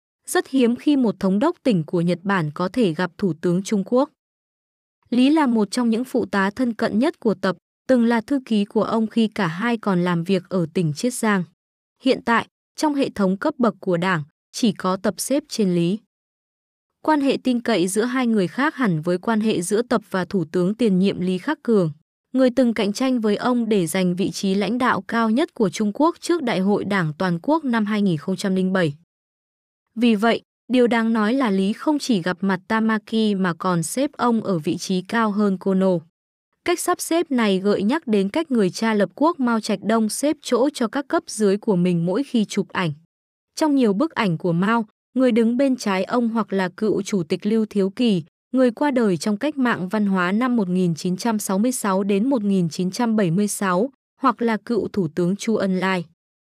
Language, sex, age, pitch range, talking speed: Vietnamese, female, 20-39, 190-245 Hz, 205 wpm